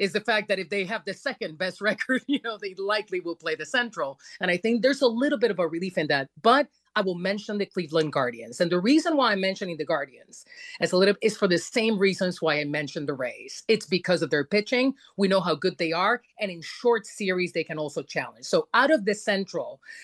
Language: English